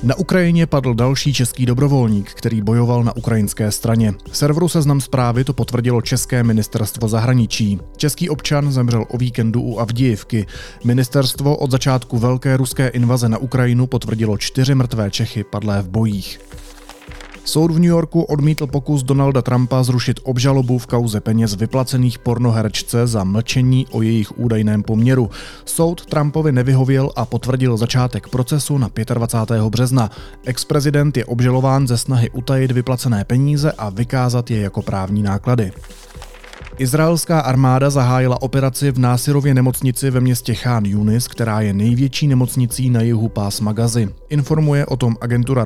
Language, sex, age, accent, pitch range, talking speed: Czech, male, 30-49, native, 110-130 Hz, 145 wpm